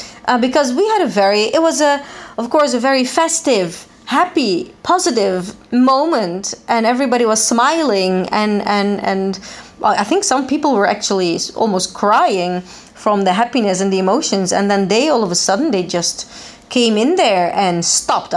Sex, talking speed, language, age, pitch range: female, 175 wpm, Italian, 30-49, 200-250 Hz